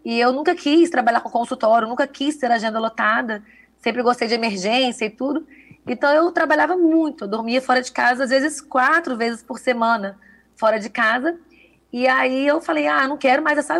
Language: Portuguese